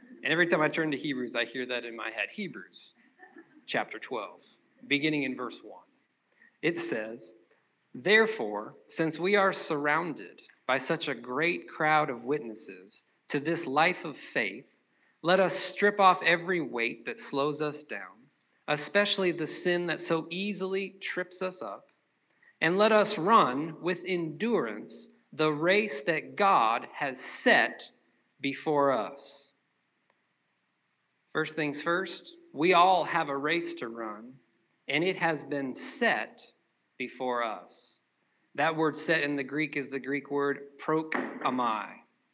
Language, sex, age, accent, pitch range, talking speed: English, male, 40-59, American, 140-185 Hz, 140 wpm